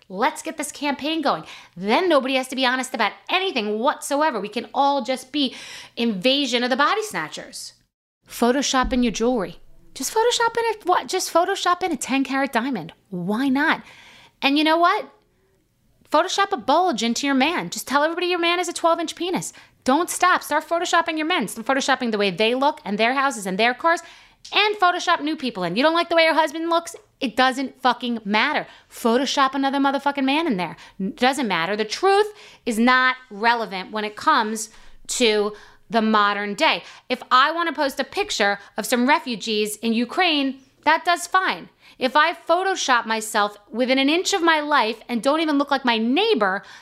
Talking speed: 190 wpm